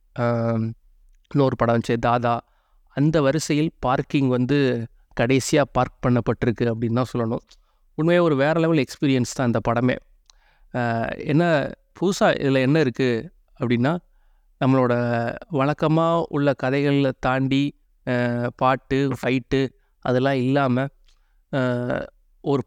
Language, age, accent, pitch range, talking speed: Tamil, 30-49, native, 120-140 Hz, 100 wpm